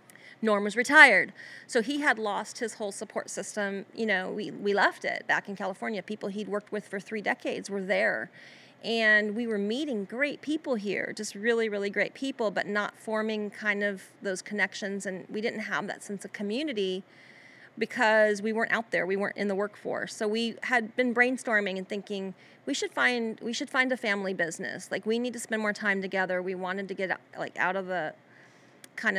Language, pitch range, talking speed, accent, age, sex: English, 190-225 Hz, 200 wpm, American, 30-49, female